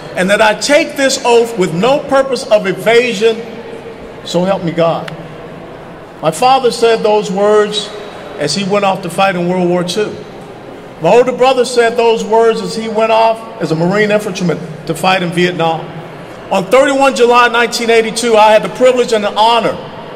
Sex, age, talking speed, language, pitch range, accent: male, 50-69, 175 wpm, English, 175-235 Hz, American